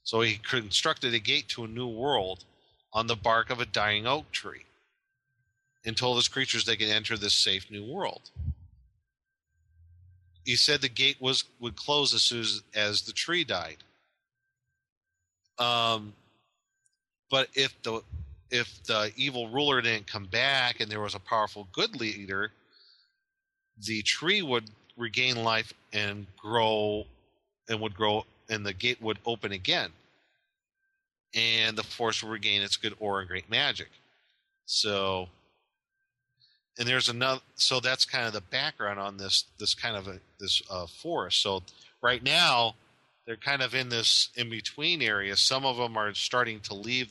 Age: 40-59